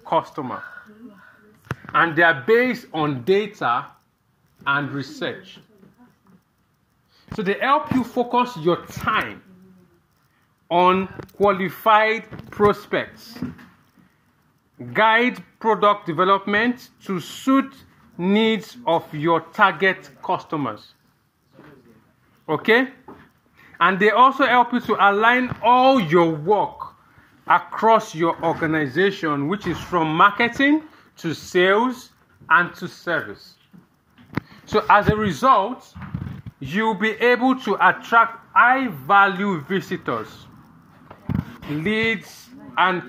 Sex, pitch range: male, 175-230 Hz